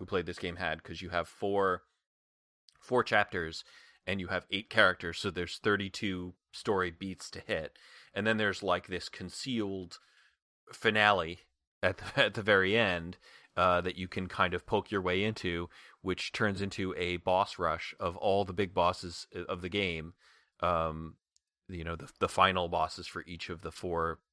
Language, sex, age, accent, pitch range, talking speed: English, male, 30-49, American, 90-105 Hz, 175 wpm